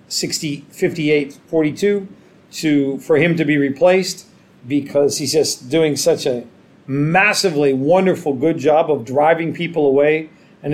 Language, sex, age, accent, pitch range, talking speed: English, male, 50-69, American, 140-170 Hz, 125 wpm